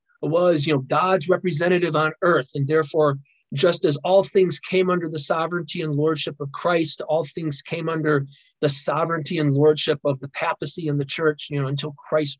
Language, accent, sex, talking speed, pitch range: English, American, male, 190 wpm, 150-190 Hz